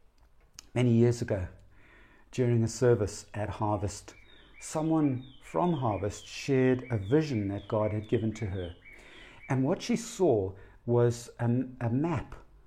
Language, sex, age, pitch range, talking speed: English, male, 60-79, 105-160 Hz, 135 wpm